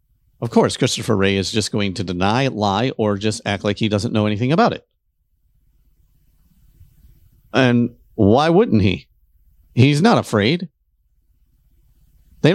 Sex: male